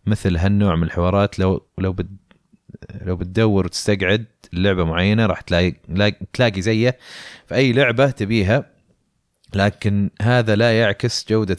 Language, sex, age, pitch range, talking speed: Arabic, male, 30-49, 90-115 Hz, 135 wpm